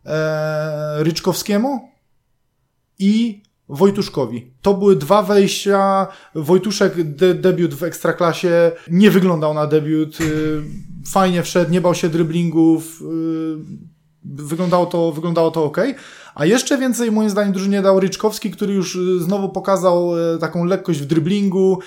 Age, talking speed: 20-39, 120 wpm